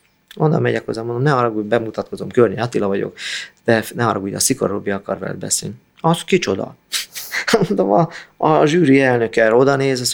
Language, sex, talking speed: Hungarian, male, 180 wpm